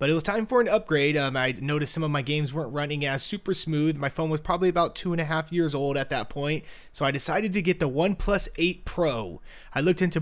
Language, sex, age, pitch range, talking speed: English, male, 20-39, 130-165 Hz, 265 wpm